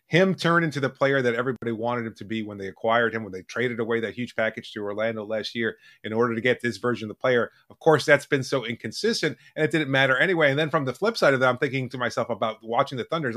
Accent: American